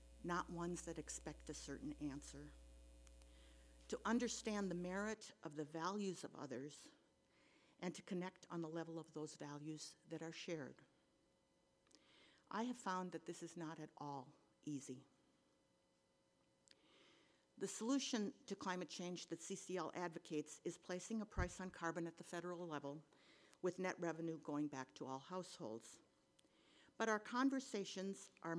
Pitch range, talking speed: 155-210 Hz, 145 wpm